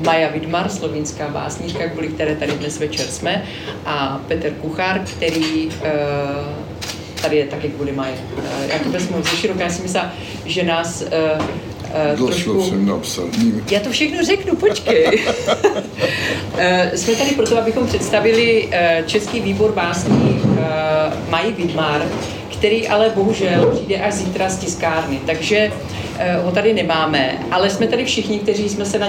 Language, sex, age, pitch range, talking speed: Czech, female, 40-59, 155-205 Hz, 130 wpm